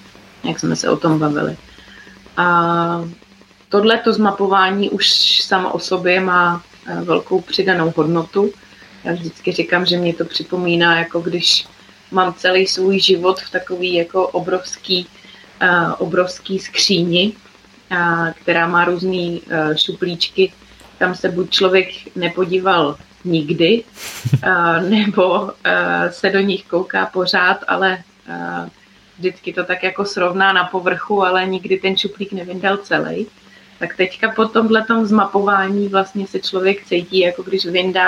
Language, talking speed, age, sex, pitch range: Slovak, 130 wpm, 30-49, female, 175-200 Hz